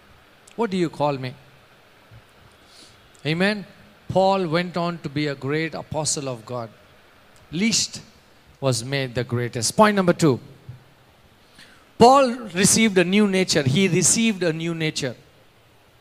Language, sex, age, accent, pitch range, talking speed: English, male, 50-69, Indian, 155-220 Hz, 125 wpm